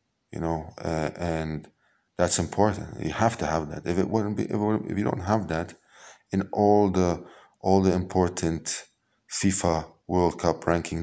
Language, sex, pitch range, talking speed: Hebrew, male, 80-100 Hz, 165 wpm